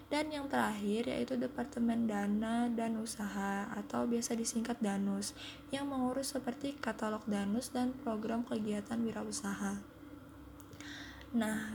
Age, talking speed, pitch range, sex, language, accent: 20-39, 110 wpm, 210-245 Hz, female, Indonesian, native